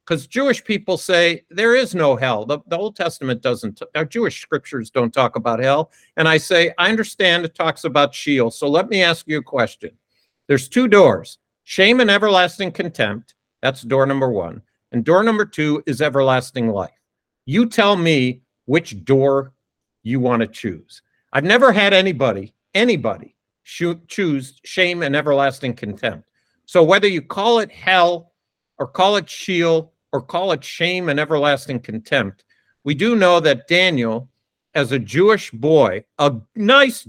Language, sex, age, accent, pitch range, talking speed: English, male, 50-69, American, 130-180 Hz, 165 wpm